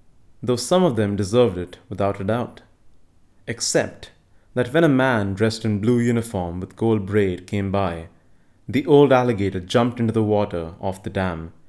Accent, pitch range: Indian, 95-115 Hz